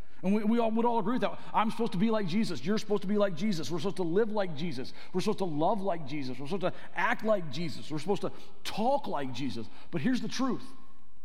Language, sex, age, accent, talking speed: English, male, 40-59, American, 260 wpm